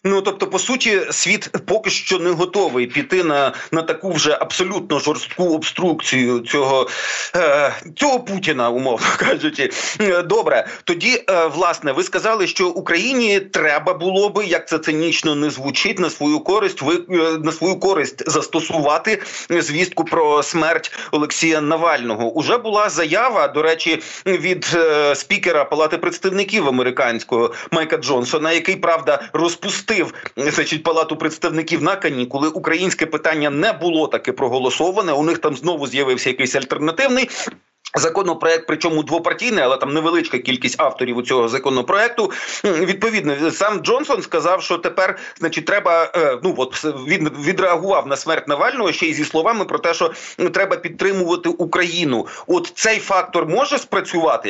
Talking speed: 135 wpm